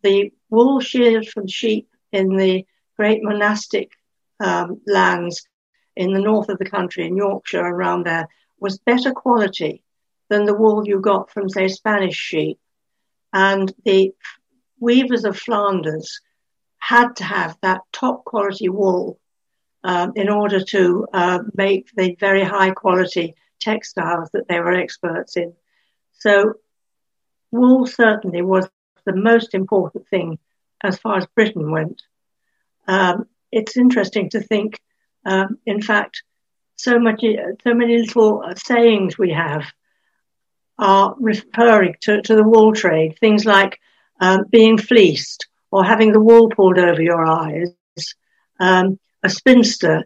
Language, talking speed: English, 130 wpm